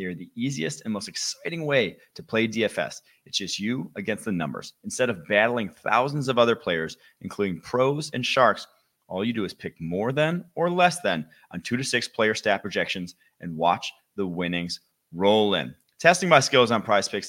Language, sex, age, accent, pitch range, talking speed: English, male, 30-49, American, 95-135 Hz, 200 wpm